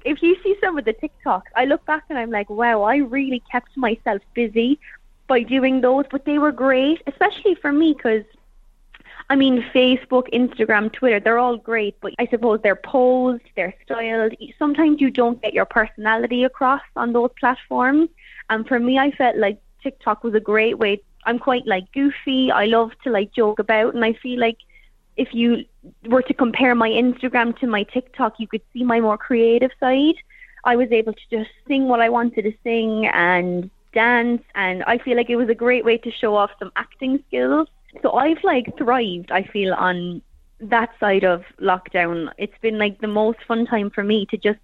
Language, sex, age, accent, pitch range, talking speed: English, female, 20-39, Irish, 220-260 Hz, 200 wpm